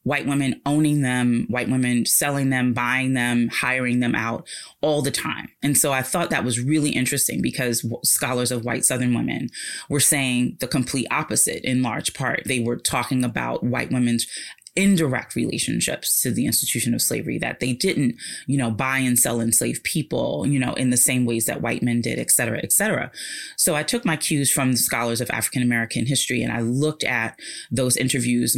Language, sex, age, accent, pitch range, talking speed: English, female, 20-39, American, 120-135 Hz, 195 wpm